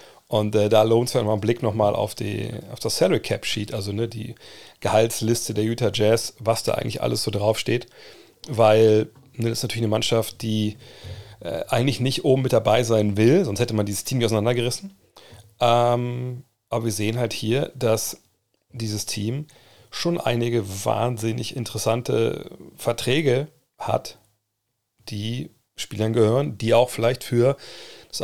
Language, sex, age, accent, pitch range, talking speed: German, male, 40-59, German, 105-125 Hz, 155 wpm